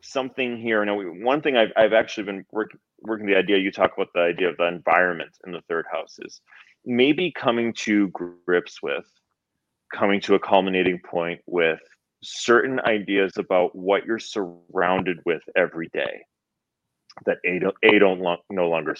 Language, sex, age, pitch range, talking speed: English, male, 30-49, 95-115 Hz, 170 wpm